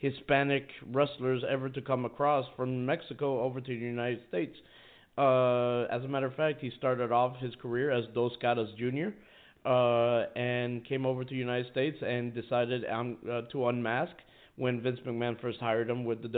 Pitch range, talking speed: 120-145 Hz, 185 wpm